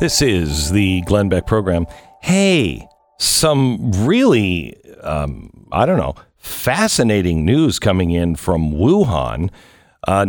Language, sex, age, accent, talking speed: English, male, 50-69, American, 115 wpm